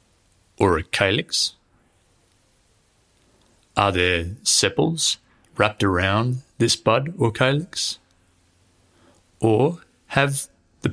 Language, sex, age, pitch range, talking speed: English, male, 30-49, 80-115 Hz, 80 wpm